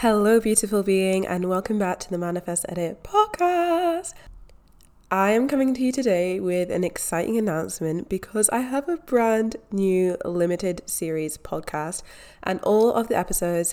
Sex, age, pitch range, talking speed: female, 20-39, 175-220 Hz, 155 wpm